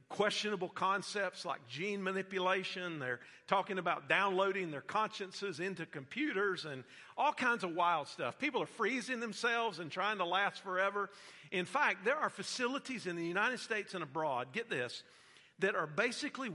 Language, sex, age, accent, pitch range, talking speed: English, male, 50-69, American, 150-205 Hz, 160 wpm